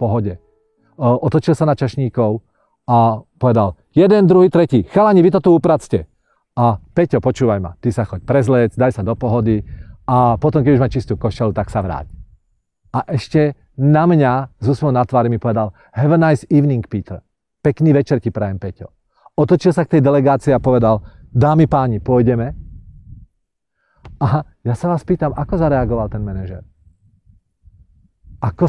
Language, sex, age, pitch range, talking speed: Czech, male, 40-59, 110-165 Hz, 160 wpm